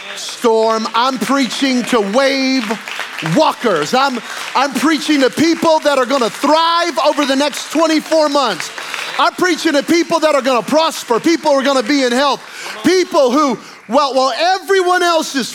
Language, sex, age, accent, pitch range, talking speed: English, male, 30-49, American, 175-285 Hz, 175 wpm